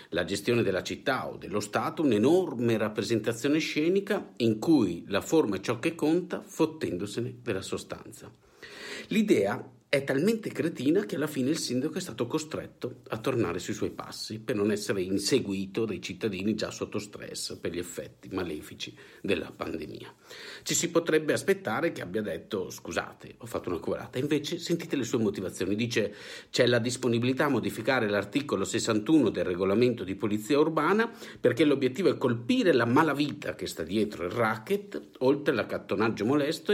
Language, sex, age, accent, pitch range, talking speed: Italian, male, 50-69, native, 110-160 Hz, 160 wpm